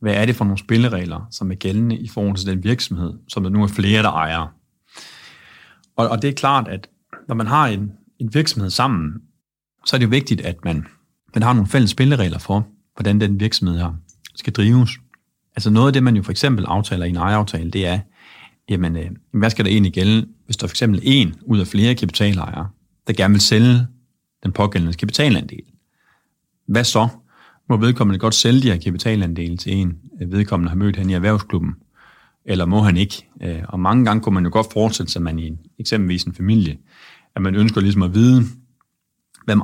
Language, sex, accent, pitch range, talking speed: Danish, male, native, 90-115 Hz, 200 wpm